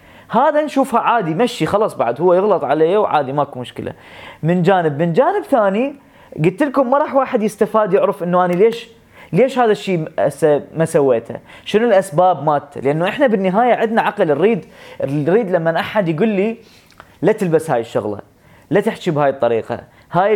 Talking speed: 160 wpm